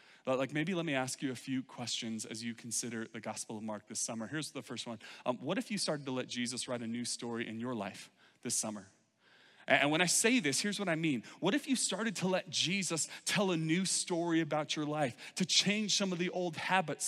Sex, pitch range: male, 140-190 Hz